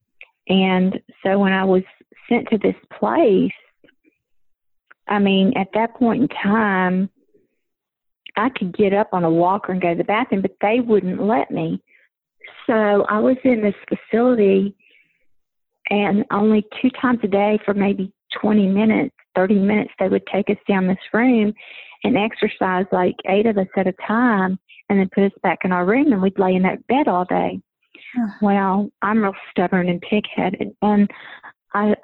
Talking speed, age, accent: 170 wpm, 40-59, American